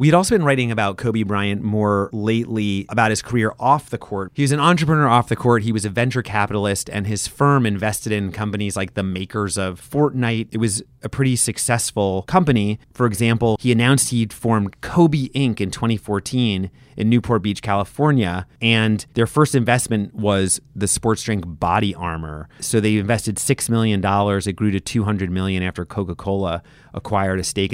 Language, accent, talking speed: English, American, 180 wpm